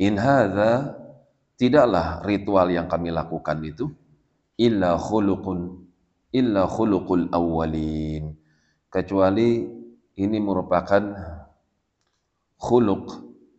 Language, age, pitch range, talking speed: Indonesian, 40-59, 80-90 Hz, 75 wpm